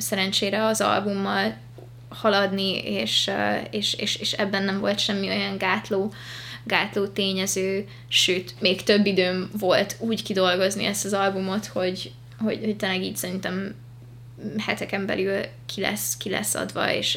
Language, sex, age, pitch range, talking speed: Hungarian, female, 20-39, 175-210 Hz, 140 wpm